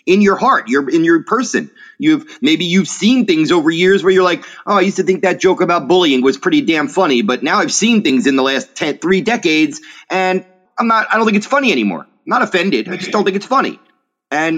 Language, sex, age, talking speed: English, male, 30-49, 245 wpm